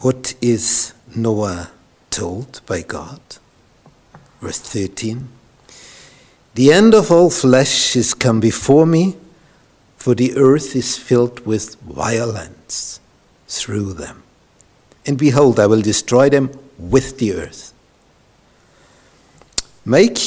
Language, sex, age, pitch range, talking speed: English, male, 60-79, 105-135 Hz, 105 wpm